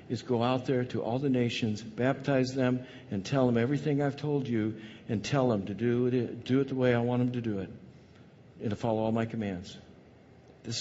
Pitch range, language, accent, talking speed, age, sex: 115-145 Hz, English, American, 220 wpm, 60-79, male